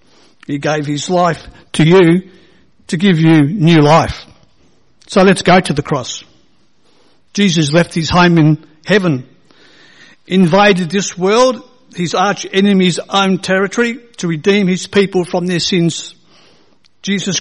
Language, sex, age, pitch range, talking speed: English, male, 60-79, 155-195 Hz, 135 wpm